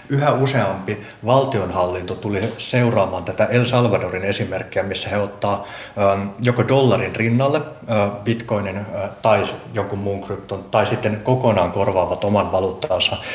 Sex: male